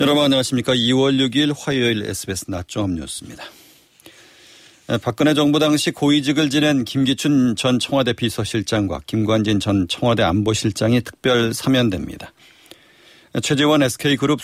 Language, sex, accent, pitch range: Korean, male, native, 105-130 Hz